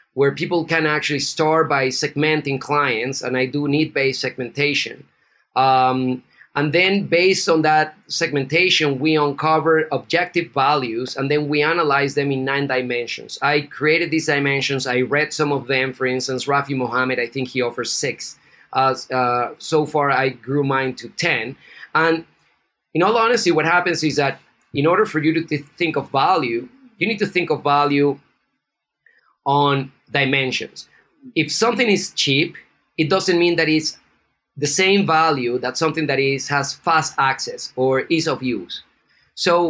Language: English